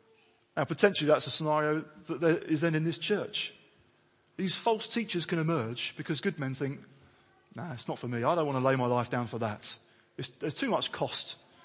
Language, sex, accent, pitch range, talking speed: English, male, British, 130-175 Hz, 210 wpm